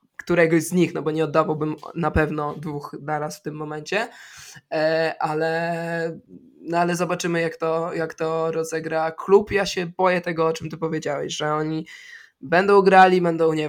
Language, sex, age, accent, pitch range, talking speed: Polish, male, 20-39, native, 155-175 Hz, 160 wpm